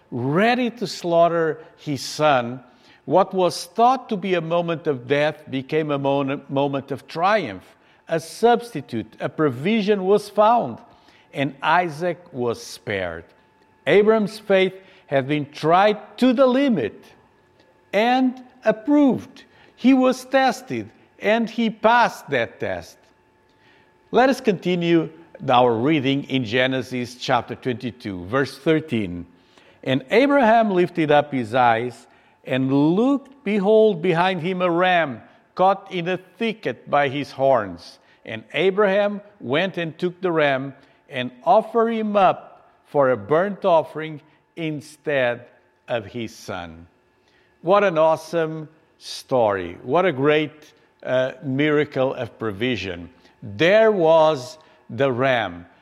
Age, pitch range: 50-69, 130-195 Hz